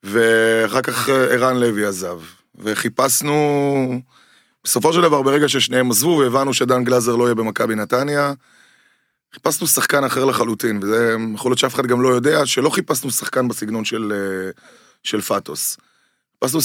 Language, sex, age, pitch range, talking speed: Hebrew, male, 20-39, 110-135 Hz, 140 wpm